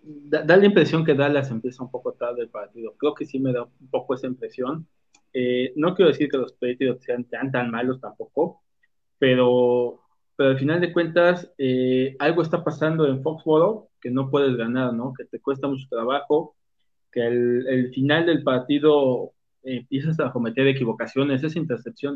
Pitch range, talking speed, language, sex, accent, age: 125-150 Hz, 185 wpm, Spanish, male, Mexican, 20-39